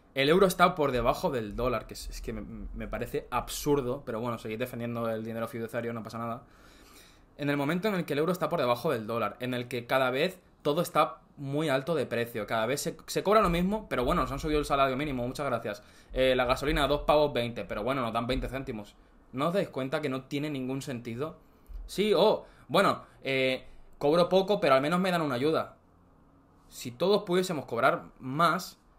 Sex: male